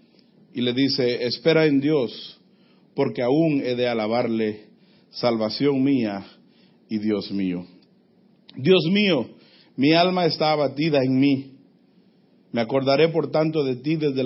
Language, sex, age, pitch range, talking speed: Spanish, male, 50-69, 120-170 Hz, 130 wpm